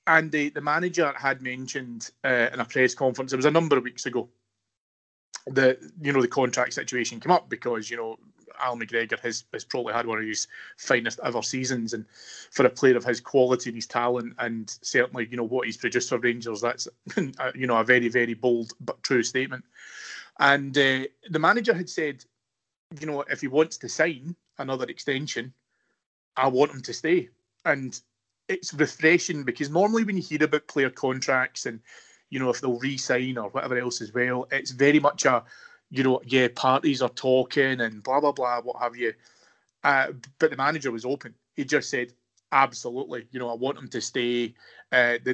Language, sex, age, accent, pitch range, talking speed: English, male, 30-49, British, 120-140 Hz, 195 wpm